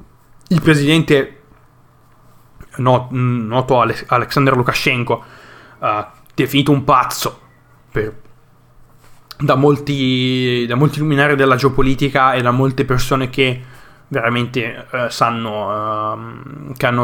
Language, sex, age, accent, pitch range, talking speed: Italian, male, 20-39, native, 120-140 Hz, 105 wpm